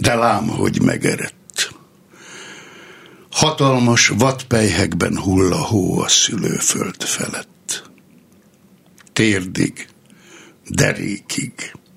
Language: Hungarian